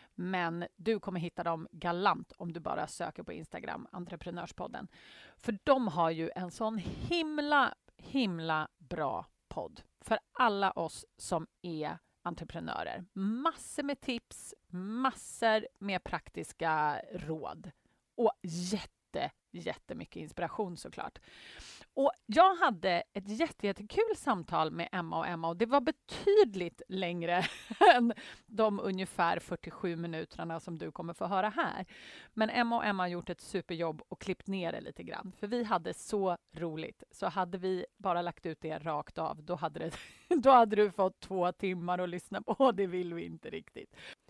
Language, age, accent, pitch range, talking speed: Swedish, 30-49, native, 170-235 Hz, 155 wpm